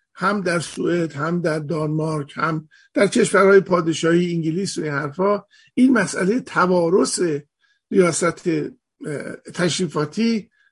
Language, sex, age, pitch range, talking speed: Persian, male, 50-69, 170-225 Hz, 100 wpm